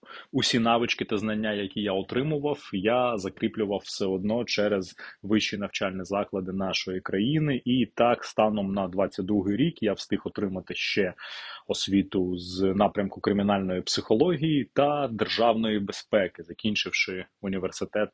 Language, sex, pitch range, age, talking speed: Ukrainian, male, 95-115 Hz, 20-39, 120 wpm